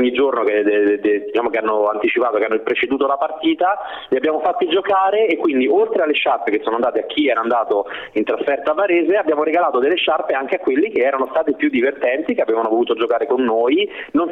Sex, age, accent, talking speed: male, 30-49, native, 220 wpm